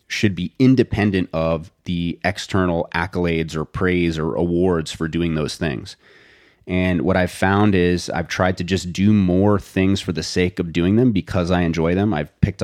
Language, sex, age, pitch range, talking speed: English, male, 30-49, 85-100 Hz, 185 wpm